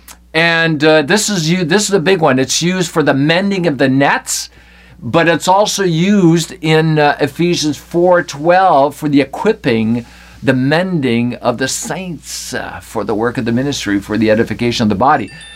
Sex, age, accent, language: male, 50-69, American, English